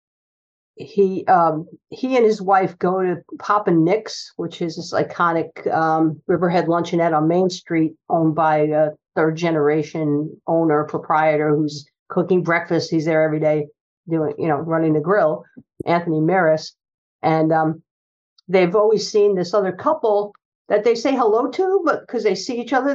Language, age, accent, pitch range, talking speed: English, 50-69, American, 160-205 Hz, 155 wpm